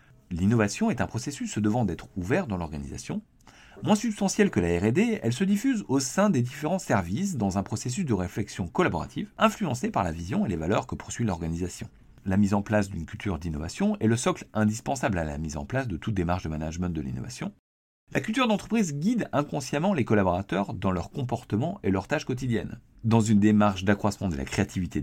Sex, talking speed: male, 200 wpm